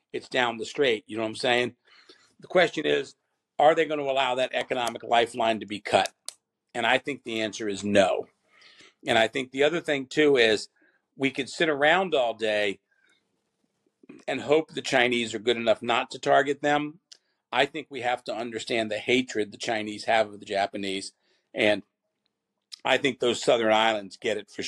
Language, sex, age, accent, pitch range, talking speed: English, male, 50-69, American, 110-140 Hz, 190 wpm